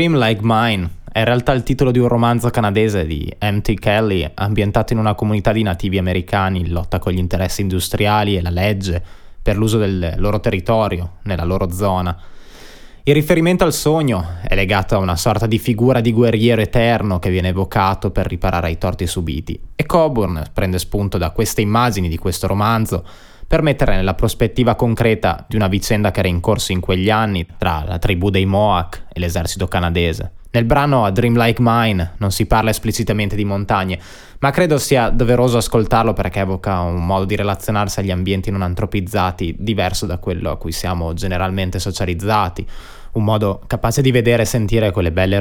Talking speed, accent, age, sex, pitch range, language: 180 wpm, native, 20-39, male, 95-115 Hz, Italian